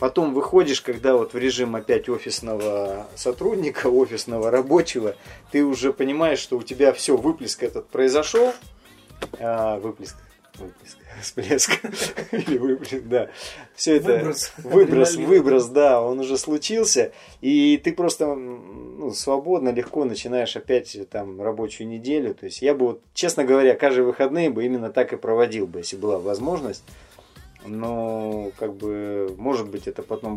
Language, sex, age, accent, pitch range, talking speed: Russian, male, 30-49, native, 110-145 Hz, 135 wpm